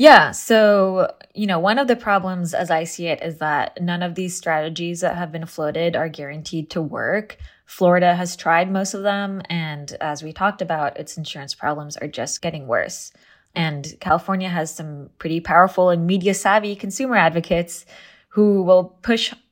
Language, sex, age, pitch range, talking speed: English, female, 20-39, 160-190 Hz, 180 wpm